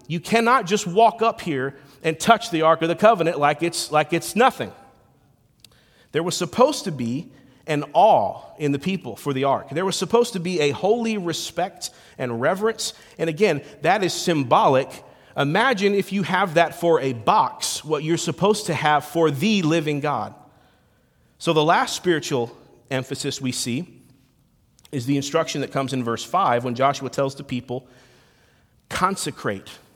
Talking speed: 165 wpm